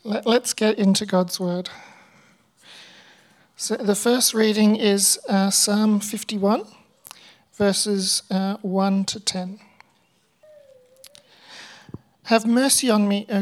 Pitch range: 195-230 Hz